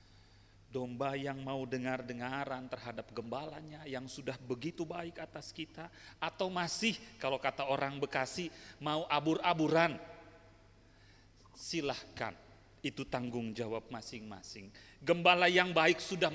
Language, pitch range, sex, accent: Indonesian, 100-135 Hz, male, native